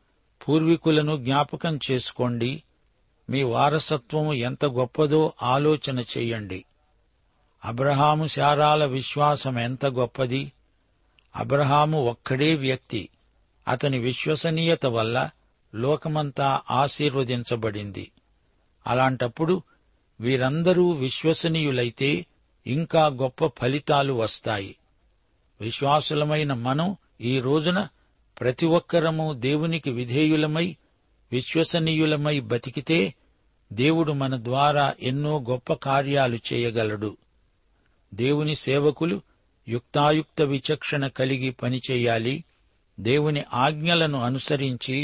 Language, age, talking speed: Telugu, 60-79, 70 wpm